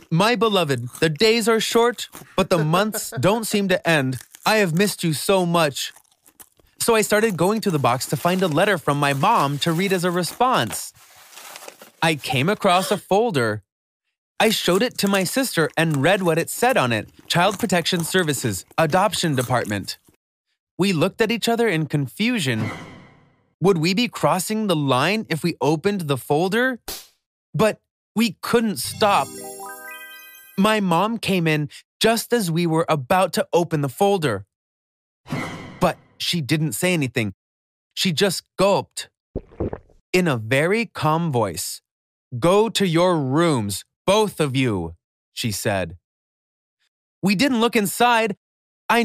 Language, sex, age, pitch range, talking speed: English, male, 20-39, 145-210 Hz, 150 wpm